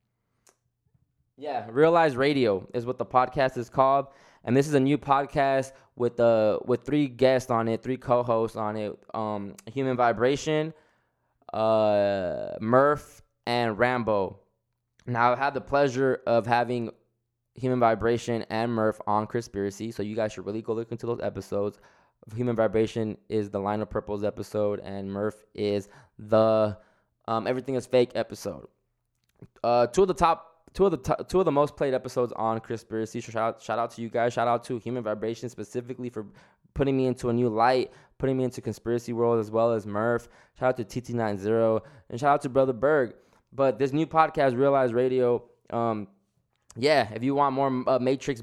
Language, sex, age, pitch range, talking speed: English, male, 20-39, 110-135 Hz, 175 wpm